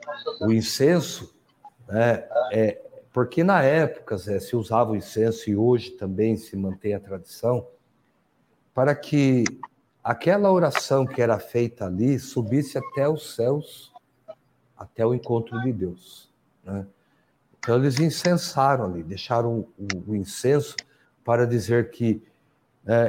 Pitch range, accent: 110-150 Hz, Brazilian